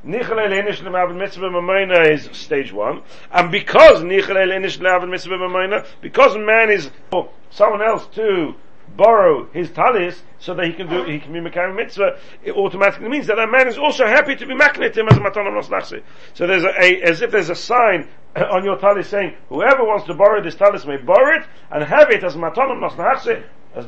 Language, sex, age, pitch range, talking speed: English, male, 40-59, 170-205 Hz, 180 wpm